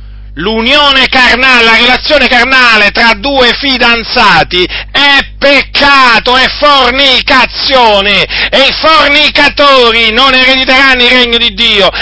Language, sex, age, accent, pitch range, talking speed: Italian, male, 40-59, native, 195-255 Hz, 105 wpm